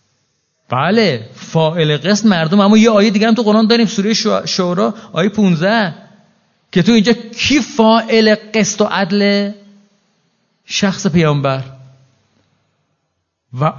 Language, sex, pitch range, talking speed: Persian, male, 135-210 Hz, 115 wpm